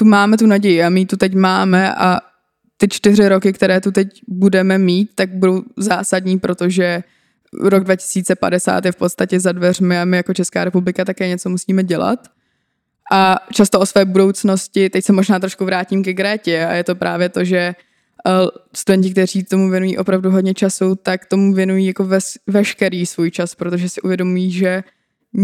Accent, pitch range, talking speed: native, 185-200 Hz, 175 wpm